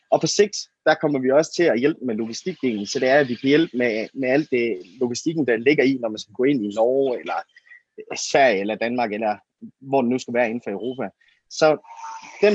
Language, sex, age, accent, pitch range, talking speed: Danish, male, 30-49, native, 120-165 Hz, 235 wpm